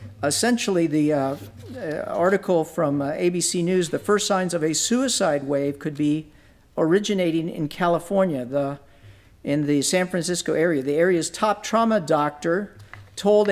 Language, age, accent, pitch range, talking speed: English, 50-69, American, 135-195 Hz, 140 wpm